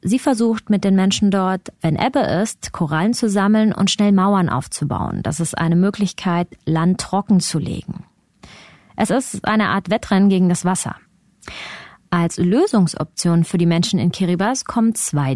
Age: 20-39